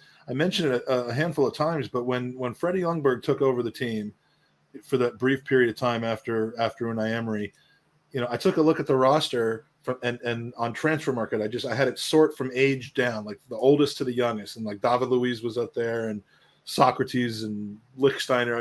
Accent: American